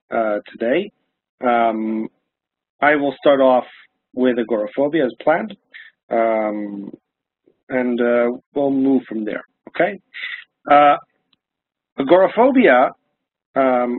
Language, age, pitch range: English, 40-59, 120-145 Hz